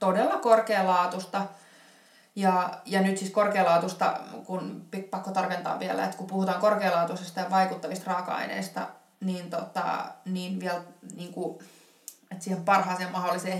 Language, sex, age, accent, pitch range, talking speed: Finnish, female, 20-39, native, 170-195 Hz, 125 wpm